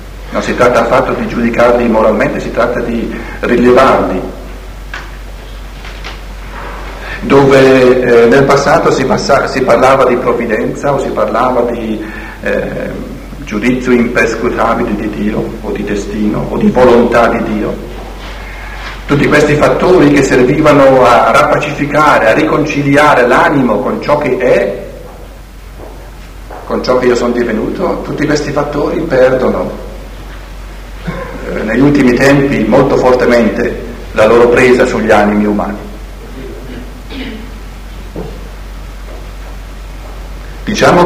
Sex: male